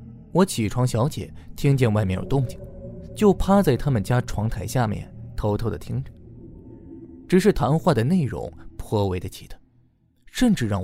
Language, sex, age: Chinese, male, 20-39